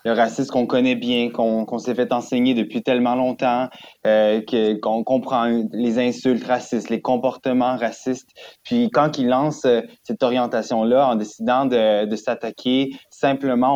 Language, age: French, 20-39